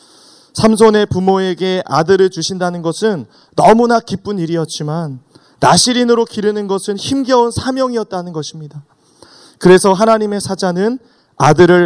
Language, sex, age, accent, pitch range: Korean, male, 30-49, native, 160-200 Hz